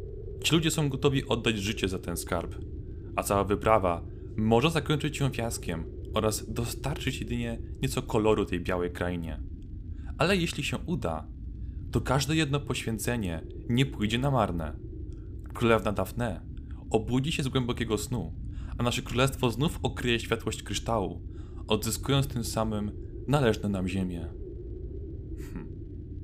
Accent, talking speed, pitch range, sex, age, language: native, 130 wpm, 90-110 Hz, male, 20-39, Polish